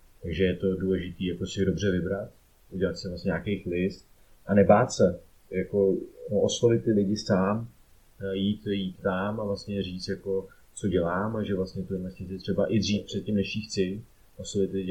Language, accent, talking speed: Czech, native, 175 wpm